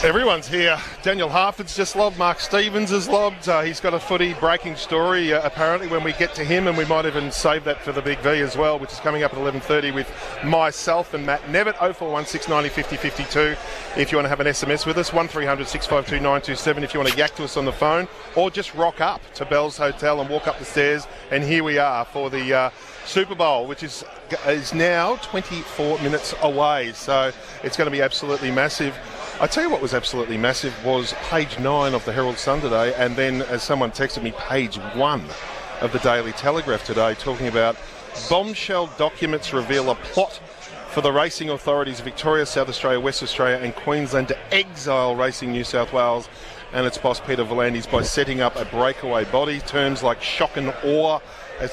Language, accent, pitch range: English, Australian, 130-160 Hz